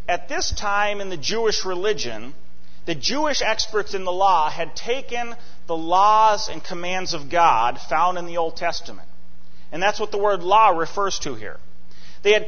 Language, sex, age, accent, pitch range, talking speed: English, male, 40-59, American, 175-245 Hz, 180 wpm